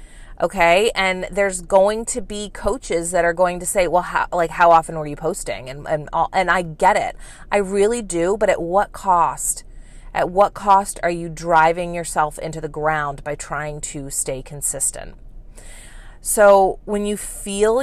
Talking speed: 170 wpm